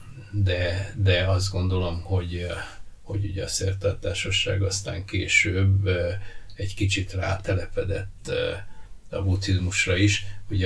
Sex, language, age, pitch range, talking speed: male, Hungarian, 60-79, 90-100 Hz, 100 wpm